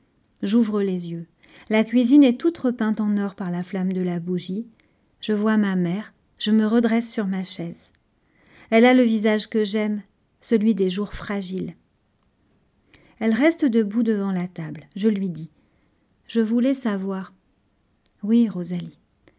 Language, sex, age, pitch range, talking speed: French, female, 40-59, 190-240 Hz, 155 wpm